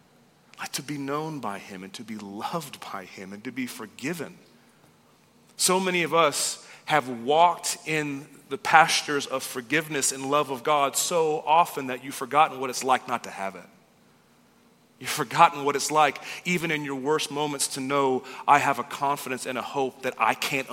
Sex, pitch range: male, 145-200 Hz